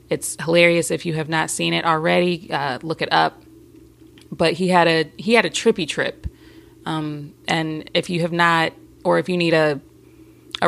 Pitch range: 165-200 Hz